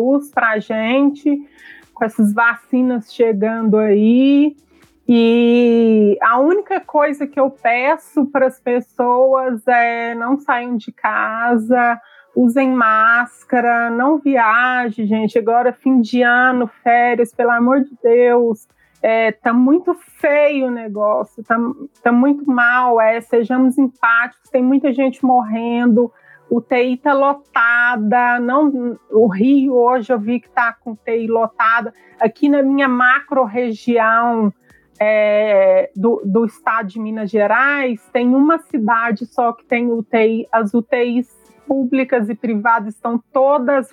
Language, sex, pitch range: Portuguese, female, 230-265 Hz